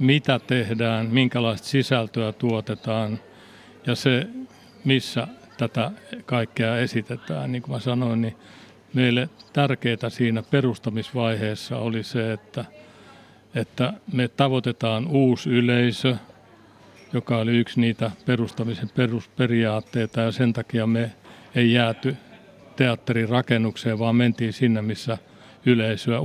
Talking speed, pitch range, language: 105 wpm, 115-130 Hz, Finnish